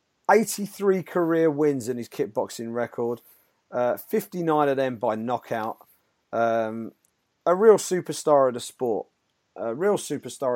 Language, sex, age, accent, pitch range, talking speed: English, male, 40-59, British, 115-150 Hz, 130 wpm